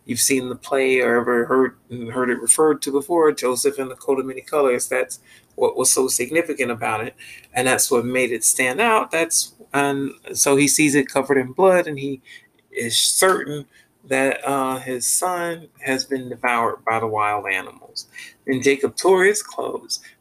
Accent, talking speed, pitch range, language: American, 185 wpm, 125-150 Hz, English